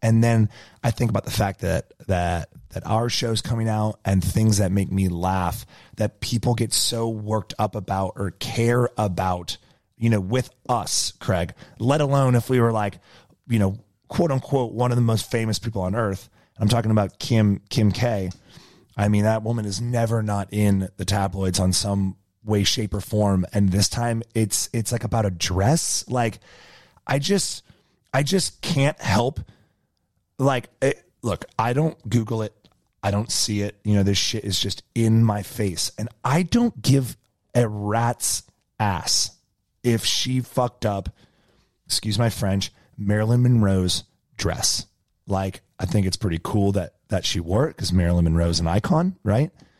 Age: 30-49